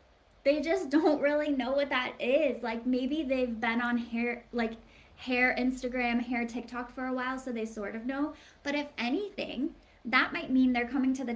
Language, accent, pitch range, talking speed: English, American, 235-280 Hz, 195 wpm